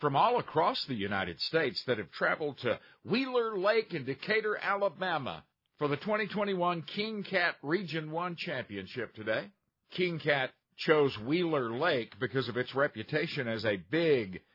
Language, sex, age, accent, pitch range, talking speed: English, male, 50-69, American, 130-185 Hz, 150 wpm